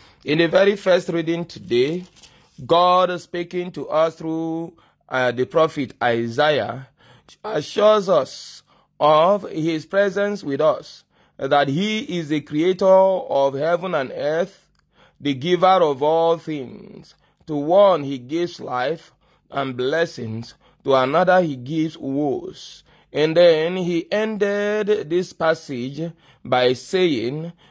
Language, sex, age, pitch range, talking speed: English, male, 30-49, 140-185 Hz, 120 wpm